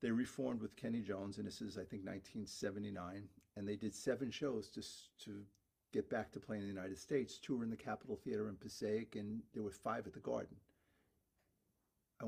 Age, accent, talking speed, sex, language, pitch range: 50-69, American, 205 wpm, male, English, 100-130 Hz